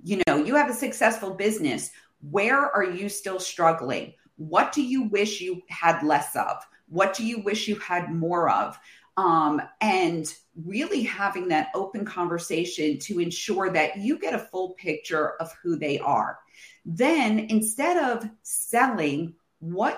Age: 40-59